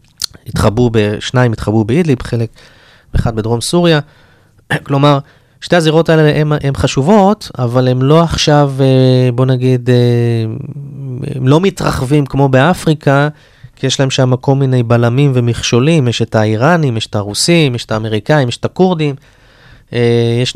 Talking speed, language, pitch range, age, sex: 130 wpm, Hebrew, 115-140 Hz, 20-39, male